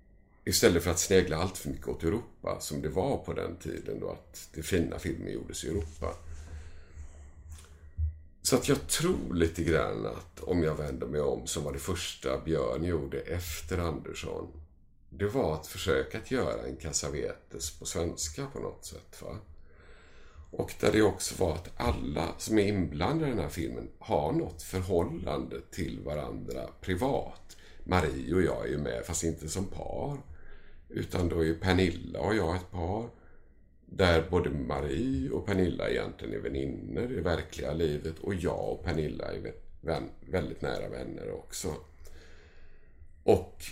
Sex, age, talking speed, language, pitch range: male, 50-69, 160 wpm, Swedish, 80-90 Hz